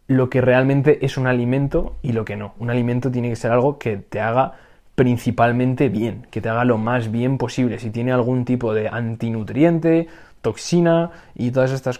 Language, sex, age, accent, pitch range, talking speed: Spanish, male, 20-39, Spanish, 110-135 Hz, 190 wpm